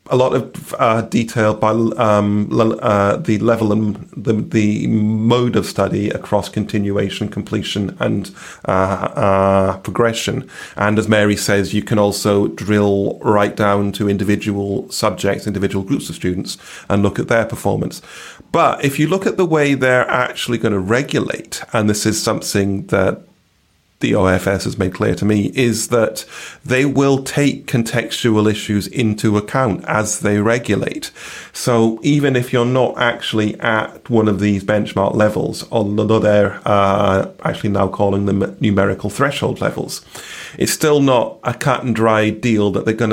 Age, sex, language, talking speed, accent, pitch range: 30-49, male, English, 160 wpm, British, 100-120 Hz